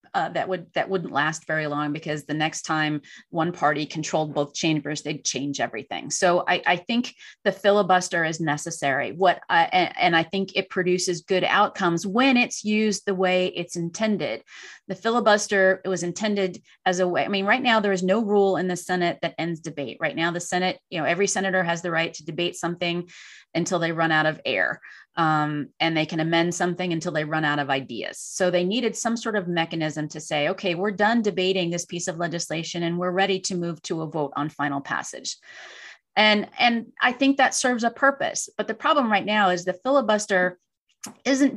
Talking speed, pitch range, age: 205 wpm, 165-200 Hz, 30-49